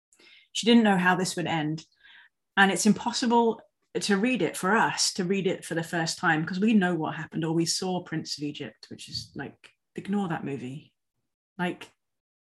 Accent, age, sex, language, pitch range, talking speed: British, 30-49, female, English, 165-215 Hz, 190 wpm